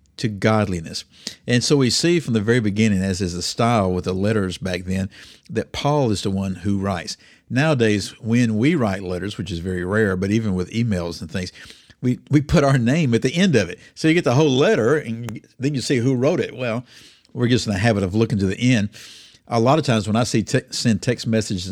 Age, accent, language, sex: 50-69, American, English, male